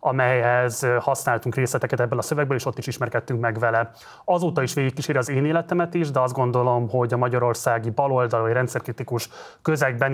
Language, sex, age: Hungarian, male, 30-49